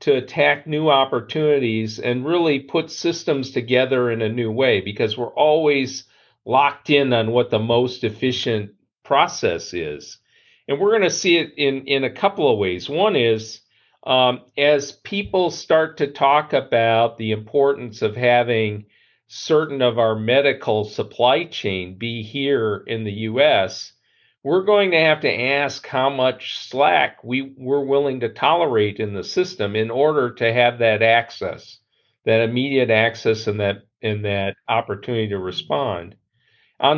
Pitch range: 110-145 Hz